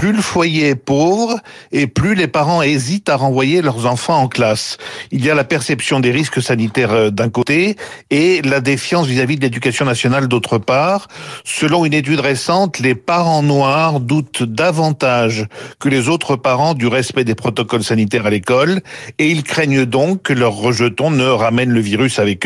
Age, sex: 50-69, male